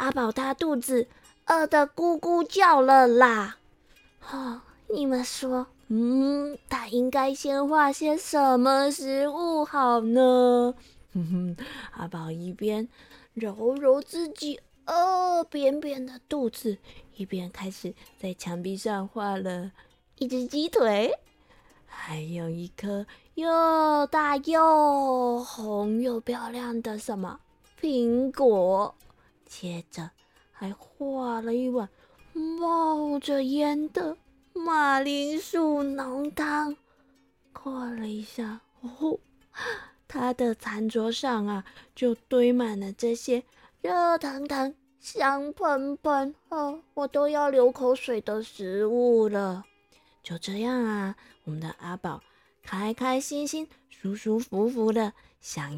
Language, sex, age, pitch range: Chinese, female, 20-39, 215-285 Hz